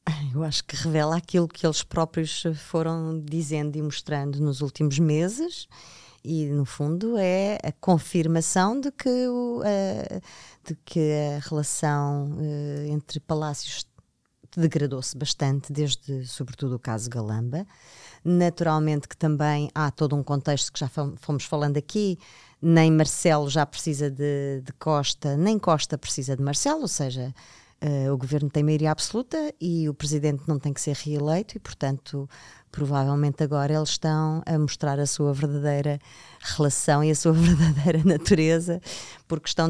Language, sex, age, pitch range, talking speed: Portuguese, female, 20-39, 140-165 Hz, 140 wpm